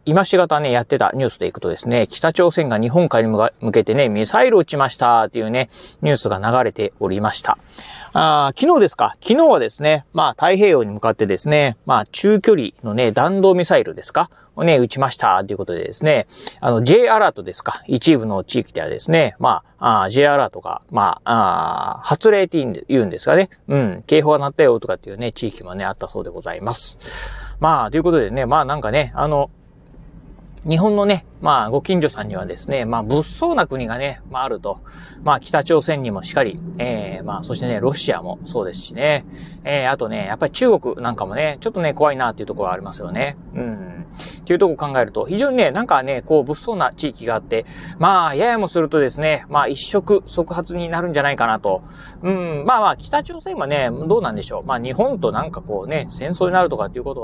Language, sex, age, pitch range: Japanese, male, 40-59, 130-175 Hz